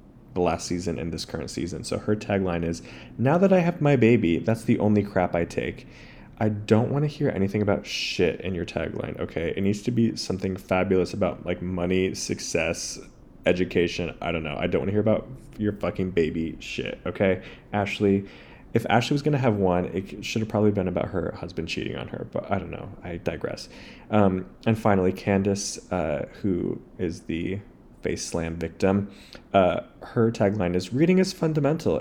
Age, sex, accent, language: 20-39, male, American, English